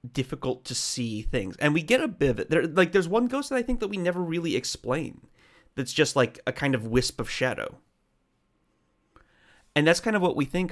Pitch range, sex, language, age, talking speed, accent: 120-160 Hz, male, English, 30-49, 225 wpm, American